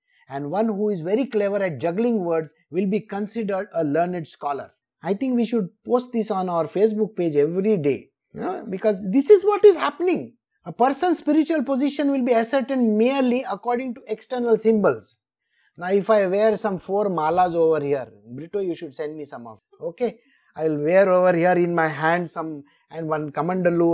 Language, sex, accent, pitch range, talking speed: English, male, Indian, 155-255 Hz, 185 wpm